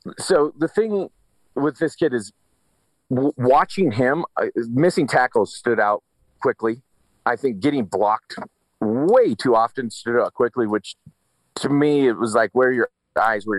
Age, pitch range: 40-59, 105-155 Hz